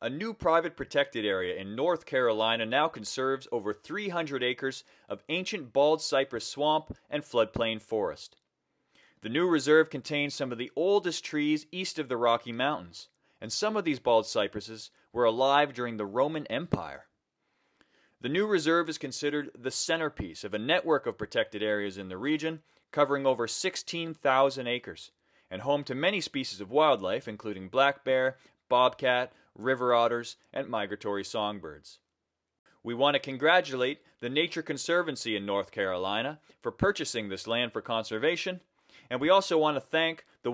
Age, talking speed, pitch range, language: 30-49, 155 wpm, 115-155 Hz, English